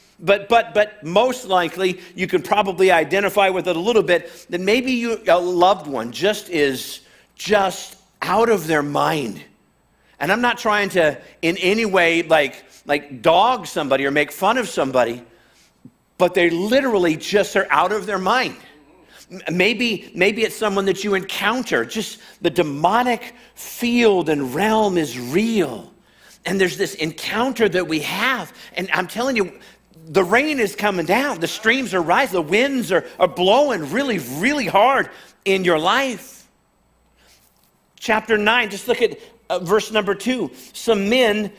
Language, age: English, 50-69